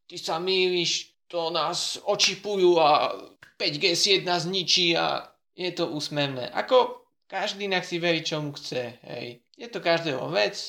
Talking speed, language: 150 wpm, Slovak